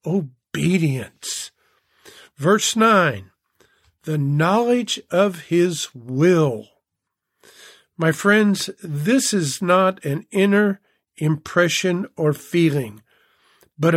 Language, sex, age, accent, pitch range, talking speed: English, male, 50-69, American, 150-215 Hz, 80 wpm